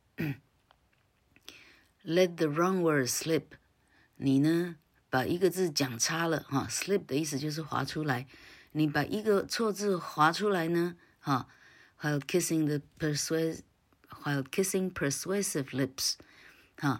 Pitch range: 120-150 Hz